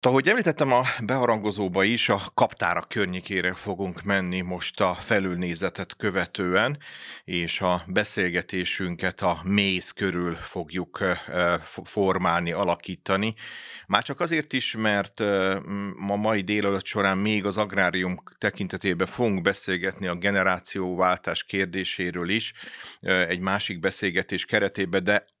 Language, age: Hungarian, 30-49